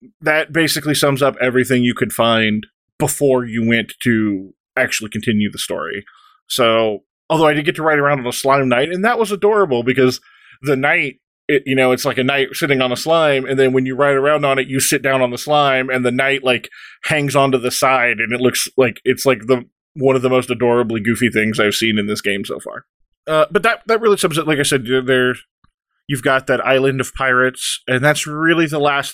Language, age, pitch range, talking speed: English, 20-39, 120-150 Hz, 230 wpm